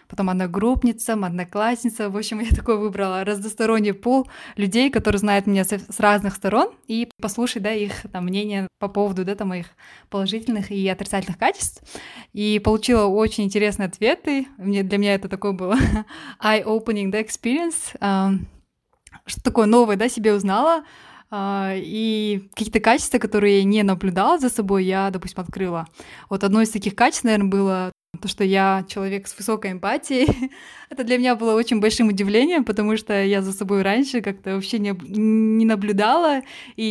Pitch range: 195-230 Hz